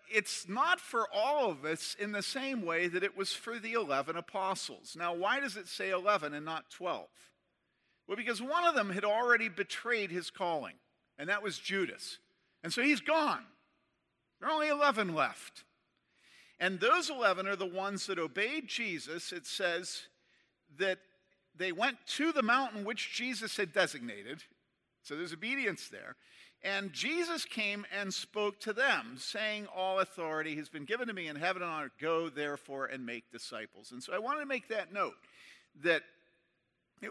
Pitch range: 160-230 Hz